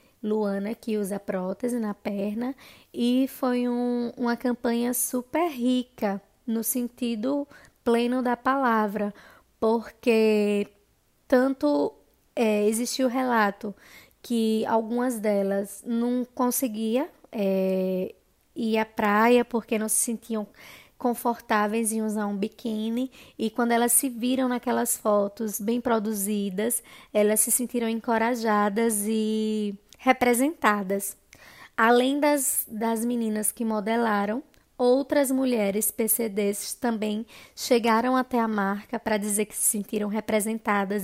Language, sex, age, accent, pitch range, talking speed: Portuguese, female, 20-39, Brazilian, 210-245 Hz, 115 wpm